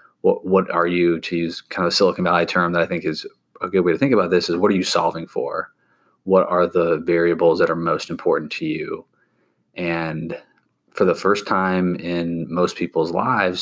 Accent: American